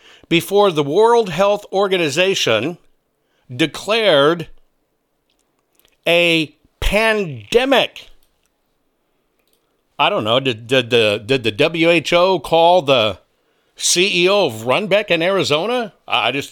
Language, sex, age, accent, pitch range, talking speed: English, male, 60-79, American, 125-190 Hz, 95 wpm